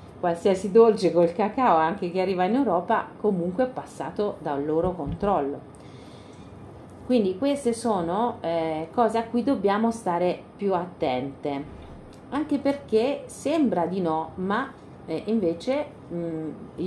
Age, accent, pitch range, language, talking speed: 40-59, native, 165-230 Hz, Italian, 125 wpm